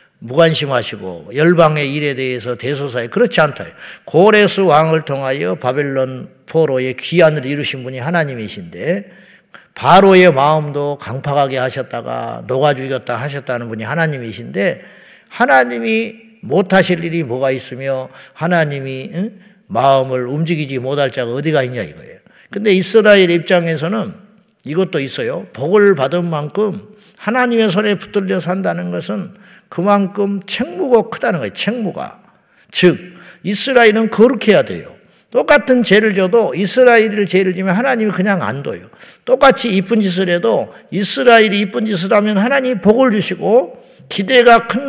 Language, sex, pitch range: Korean, male, 145-210 Hz